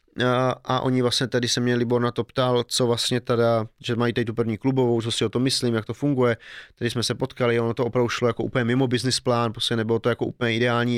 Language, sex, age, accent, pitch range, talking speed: Czech, male, 30-49, native, 115-125 Hz, 245 wpm